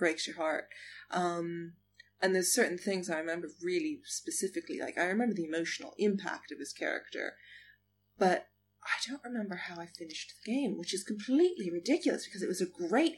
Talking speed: 180 wpm